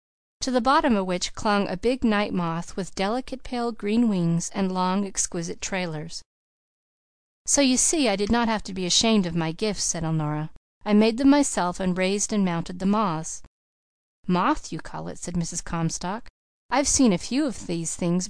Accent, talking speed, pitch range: American, 185 wpm, 175-230 Hz